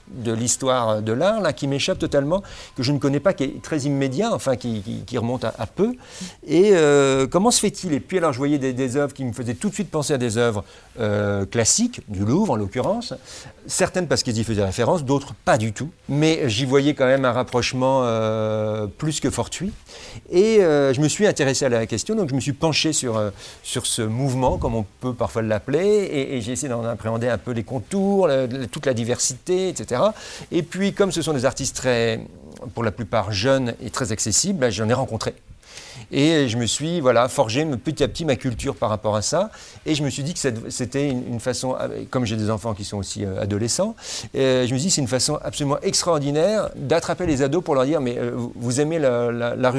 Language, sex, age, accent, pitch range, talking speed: French, male, 50-69, French, 115-150 Hz, 225 wpm